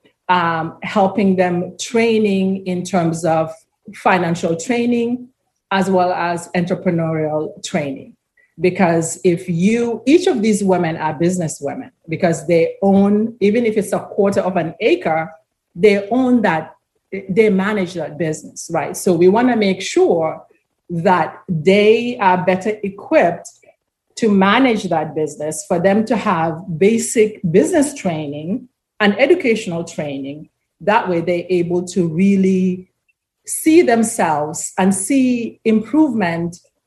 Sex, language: female, English